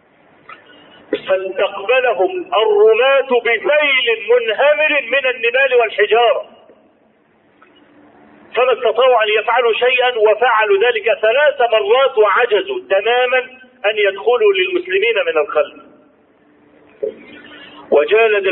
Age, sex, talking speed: 50-69, male, 80 wpm